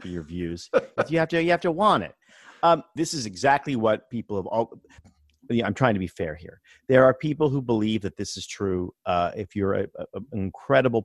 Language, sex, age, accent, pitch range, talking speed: English, male, 40-59, American, 95-130 Hz, 225 wpm